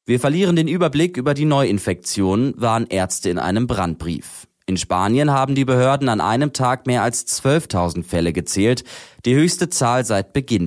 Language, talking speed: German, 170 wpm